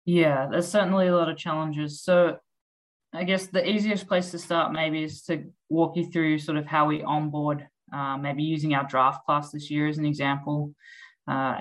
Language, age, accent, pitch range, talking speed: English, 20-39, Australian, 140-165 Hz, 195 wpm